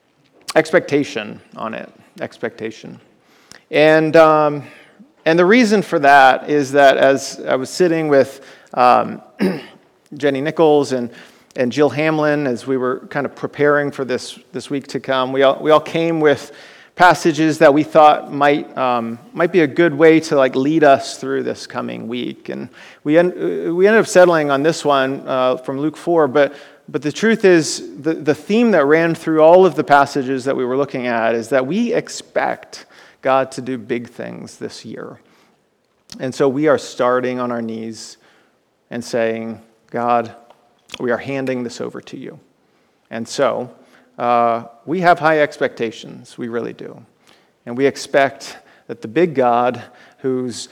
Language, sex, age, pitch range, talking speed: English, male, 40-59, 125-155 Hz, 170 wpm